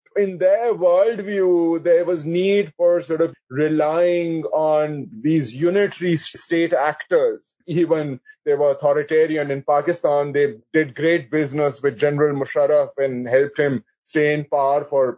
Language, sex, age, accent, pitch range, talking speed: English, male, 30-49, Indian, 145-185 Hz, 140 wpm